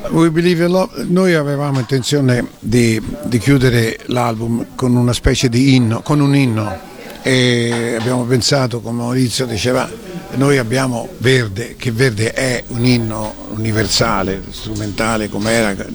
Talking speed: 130 wpm